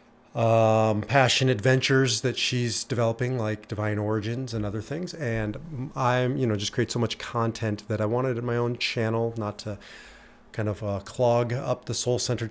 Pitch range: 105-125 Hz